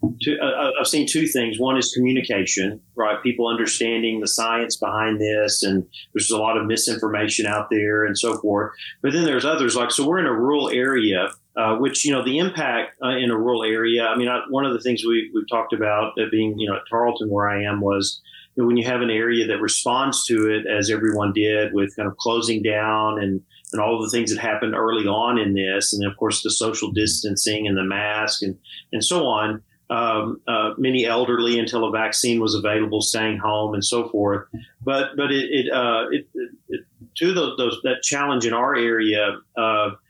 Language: English